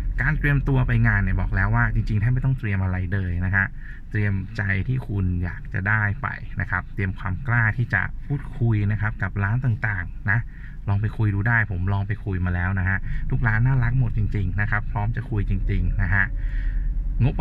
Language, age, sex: Thai, 20-39, male